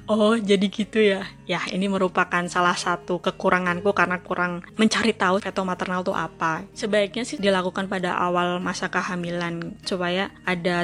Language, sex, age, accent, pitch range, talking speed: Indonesian, female, 20-39, native, 185-215 Hz, 150 wpm